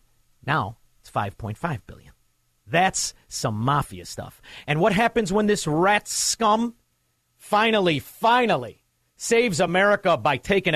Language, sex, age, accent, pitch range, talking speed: English, male, 50-69, American, 115-185 Hz, 115 wpm